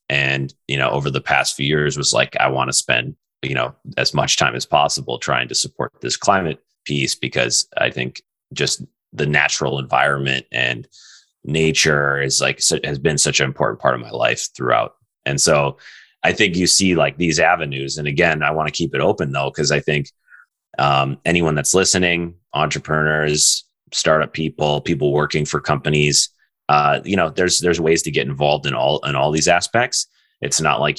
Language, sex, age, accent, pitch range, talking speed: English, male, 30-49, American, 70-80 Hz, 190 wpm